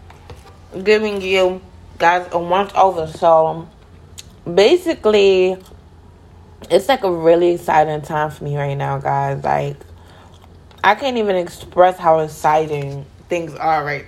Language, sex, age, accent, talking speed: English, female, 20-39, American, 125 wpm